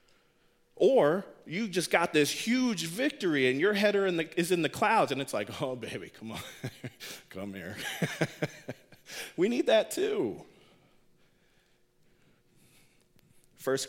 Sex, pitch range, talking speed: male, 140-205 Hz, 120 wpm